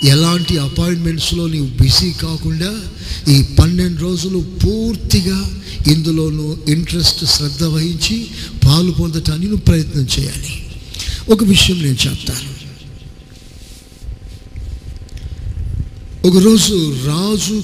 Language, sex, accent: Telugu, male, native